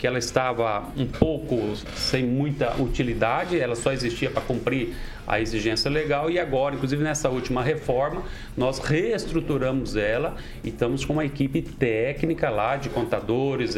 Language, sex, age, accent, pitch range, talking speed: Portuguese, male, 40-59, Brazilian, 115-160 Hz, 150 wpm